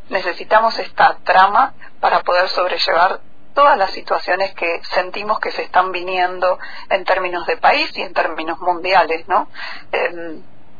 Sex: female